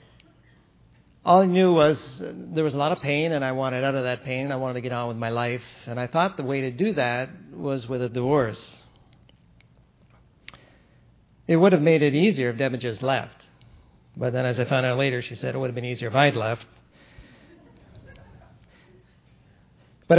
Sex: male